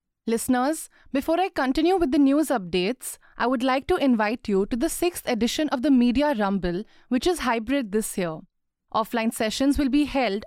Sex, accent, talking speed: female, Indian, 185 wpm